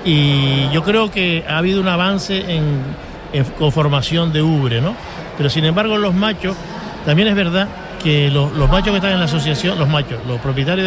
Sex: male